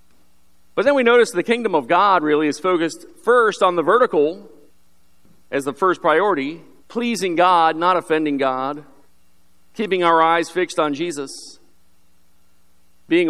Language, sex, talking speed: English, male, 140 wpm